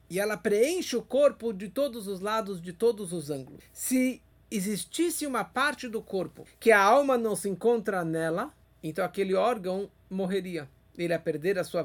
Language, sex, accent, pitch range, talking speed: Portuguese, male, Brazilian, 175-235 Hz, 175 wpm